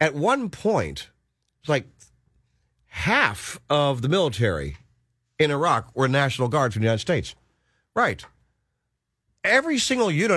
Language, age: English, 50-69